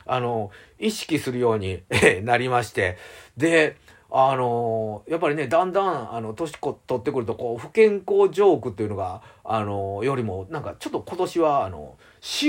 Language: Japanese